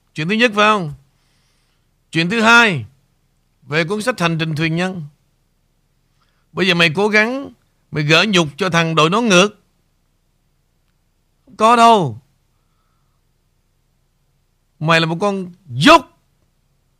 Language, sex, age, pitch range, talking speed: Vietnamese, male, 60-79, 125-180 Hz, 125 wpm